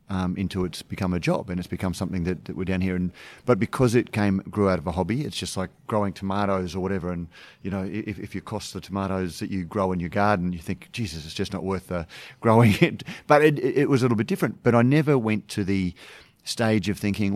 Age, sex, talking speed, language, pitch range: 40-59, male, 255 wpm, English, 95-115 Hz